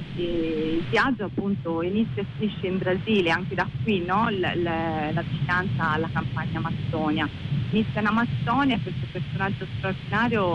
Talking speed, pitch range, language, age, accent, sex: 150 wpm, 140-175 Hz, Italian, 30-49, native, female